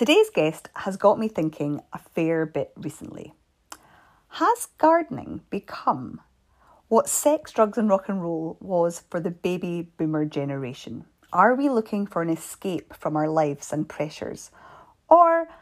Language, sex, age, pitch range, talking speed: English, female, 30-49, 160-225 Hz, 145 wpm